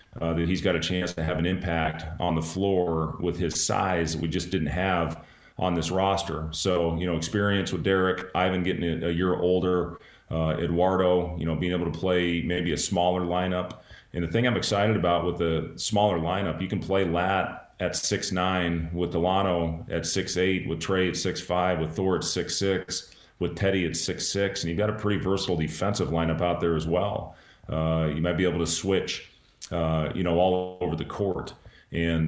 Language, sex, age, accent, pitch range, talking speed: English, male, 40-59, American, 80-95 Hz, 195 wpm